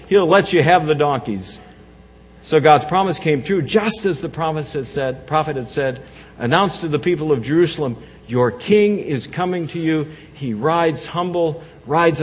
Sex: male